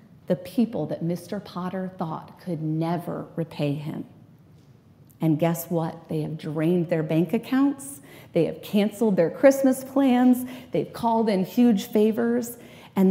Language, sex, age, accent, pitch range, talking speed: English, female, 30-49, American, 155-190 Hz, 140 wpm